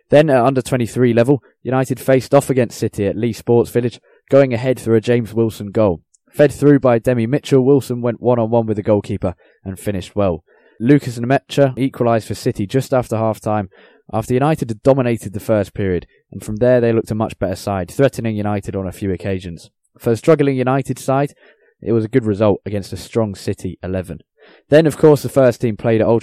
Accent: British